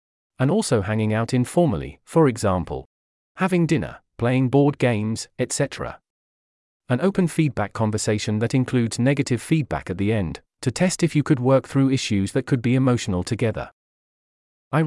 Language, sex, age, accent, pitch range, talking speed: English, male, 40-59, British, 105-140 Hz, 155 wpm